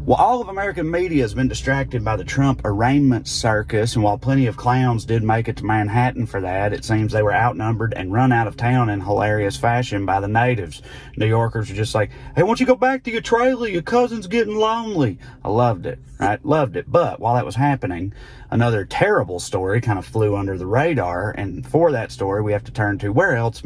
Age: 30-49